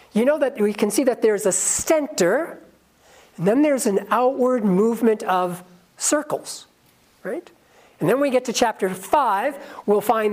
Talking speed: 165 wpm